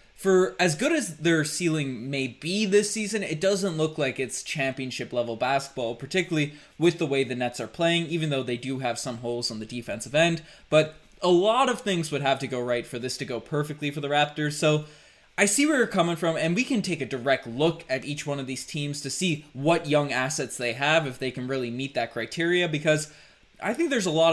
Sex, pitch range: male, 130-170 Hz